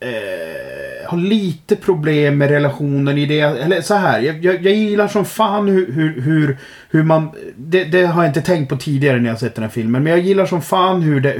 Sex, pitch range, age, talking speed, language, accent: male, 125-155 Hz, 30-49, 220 wpm, Swedish, native